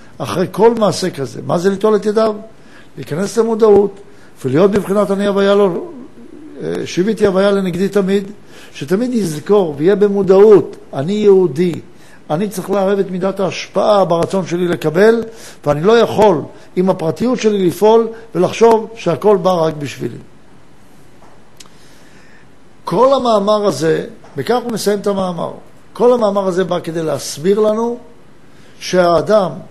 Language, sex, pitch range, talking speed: Hebrew, male, 175-210 Hz, 125 wpm